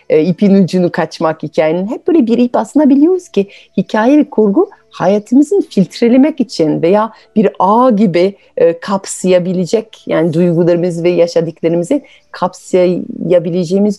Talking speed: 120 wpm